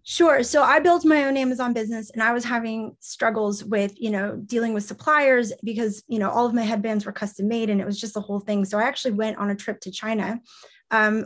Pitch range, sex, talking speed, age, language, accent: 205-240 Hz, female, 245 wpm, 20-39, English, American